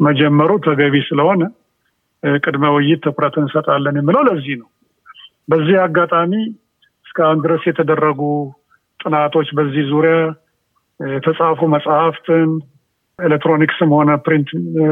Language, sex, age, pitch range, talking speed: Amharic, male, 50-69, 145-175 Hz, 95 wpm